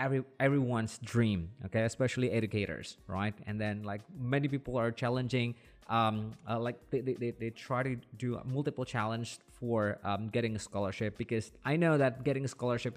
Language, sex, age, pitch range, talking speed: English, male, 20-39, 115-145 Hz, 175 wpm